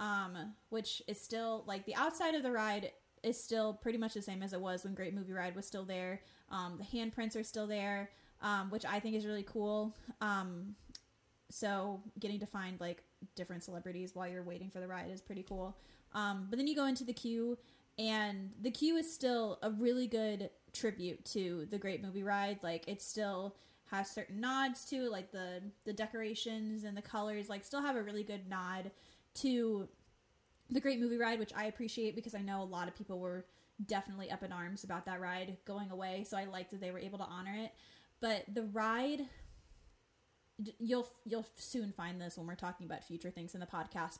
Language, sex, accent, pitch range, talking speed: English, female, American, 190-230 Hz, 205 wpm